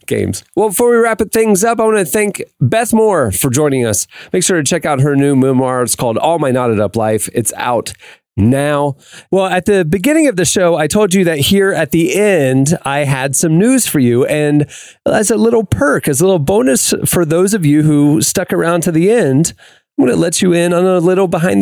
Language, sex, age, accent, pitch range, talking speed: English, male, 30-49, American, 130-190 Hz, 235 wpm